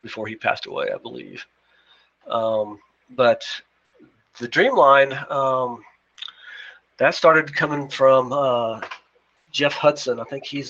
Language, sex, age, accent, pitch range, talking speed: English, male, 40-59, American, 115-140 Hz, 120 wpm